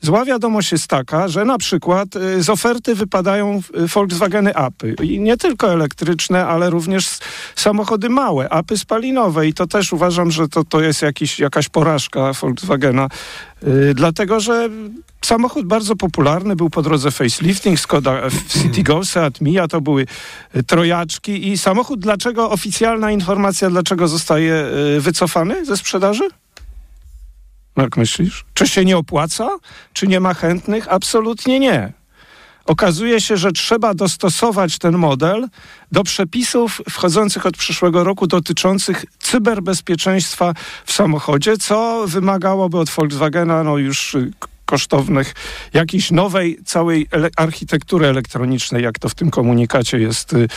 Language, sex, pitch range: Polish, male, 155-205 Hz